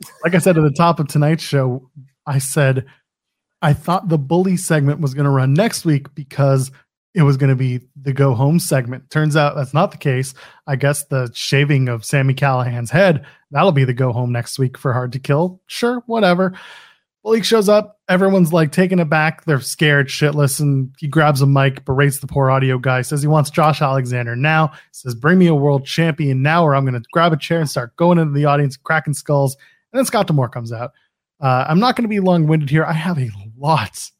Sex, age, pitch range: male, 20-39, 135-170 Hz